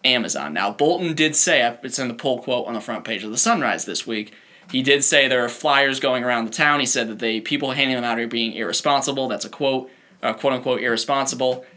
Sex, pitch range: male, 115-135 Hz